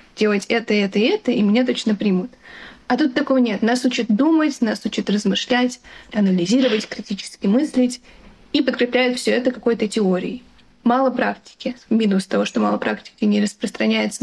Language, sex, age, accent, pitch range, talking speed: Russian, female, 20-39, native, 205-250 Hz, 150 wpm